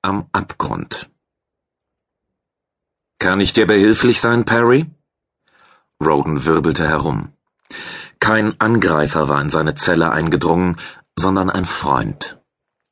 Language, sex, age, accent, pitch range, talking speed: German, male, 40-59, German, 80-110 Hz, 100 wpm